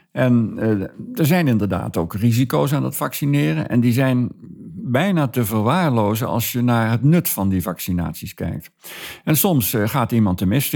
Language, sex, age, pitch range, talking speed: Dutch, male, 50-69, 90-120 Hz, 180 wpm